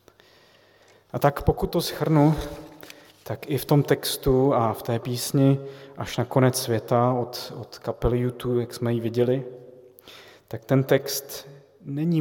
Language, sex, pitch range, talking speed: Slovak, male, 115-130 Hz, 145 wpm